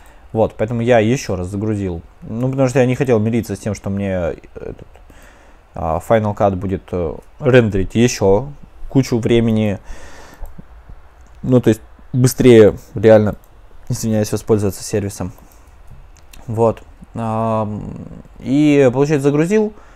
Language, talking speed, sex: Russian, 120 wpm, male